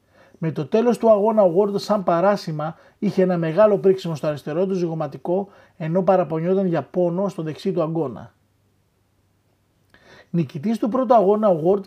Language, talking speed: Greek, 155 wpm